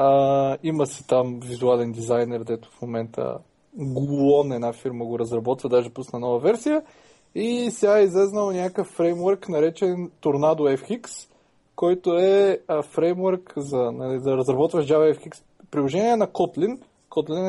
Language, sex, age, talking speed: Bulgarian, male, 20-39, 135 wpm